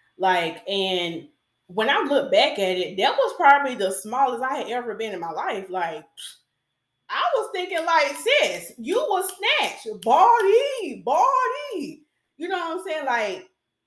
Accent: American